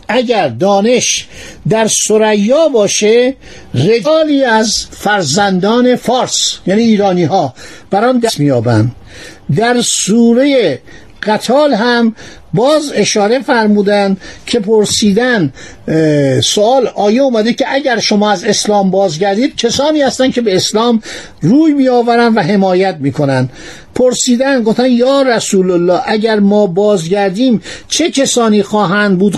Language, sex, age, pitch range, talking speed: Persian, male, 50-69, 190-245 Hz, 110 wpm